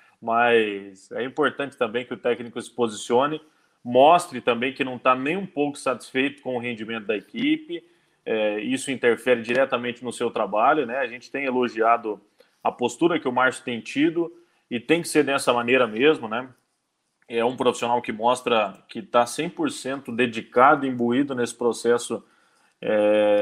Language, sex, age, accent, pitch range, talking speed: Portuguese, male, 20-39, Brazilian, 115-145 Hz, 160 wpm